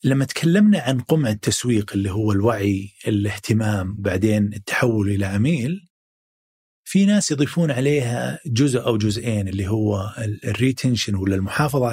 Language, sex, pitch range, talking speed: Arabic, male, 105-155 Hz, 125 wpm